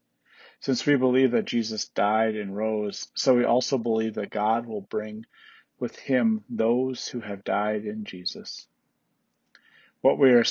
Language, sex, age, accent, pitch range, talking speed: English, male, 40-59, American, 105-135 Hz, 155 wpm